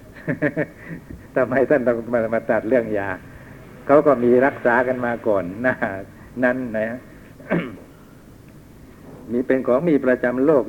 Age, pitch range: 60-79, 110-130 Hz